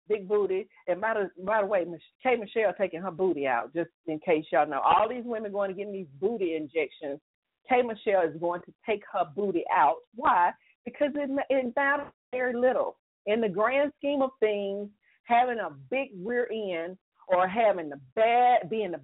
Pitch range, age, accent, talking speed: 170-225 Hz, 40-59, American, 190 wpm